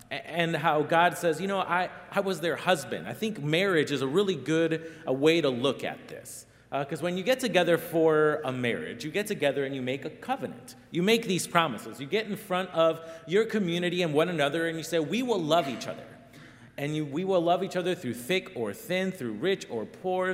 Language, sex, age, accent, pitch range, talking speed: English, male, 30-49, American, 150-195 Hz, 225 wpm